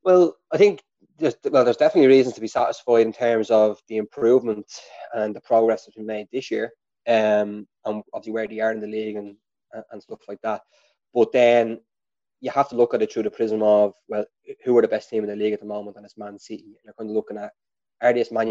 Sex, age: male, 20-39